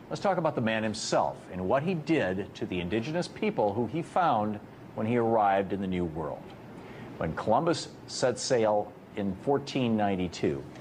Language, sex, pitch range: English, male, 105-140 Hz